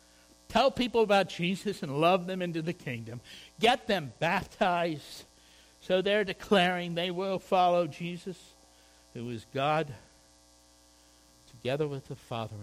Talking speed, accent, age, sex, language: 130 wpm, American, 60-79, male, English